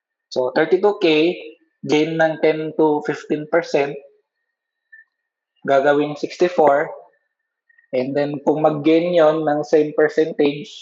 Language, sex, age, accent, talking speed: Filipino, male, 20-39, native, 95 wpm